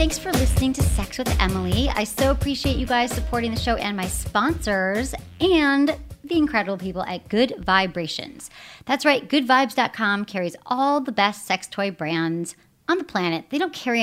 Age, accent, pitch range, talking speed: 40-59, American, 190-275 Hz, 175 wpm